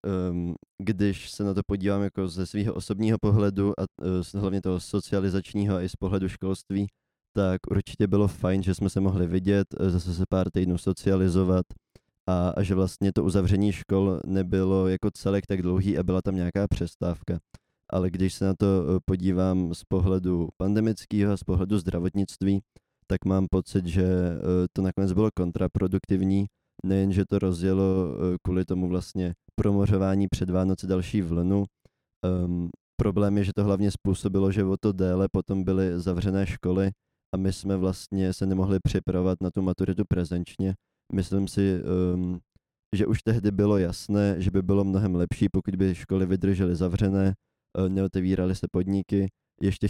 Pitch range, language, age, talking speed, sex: 90-100 Hz, Czech, 20-39, 155 wpm, male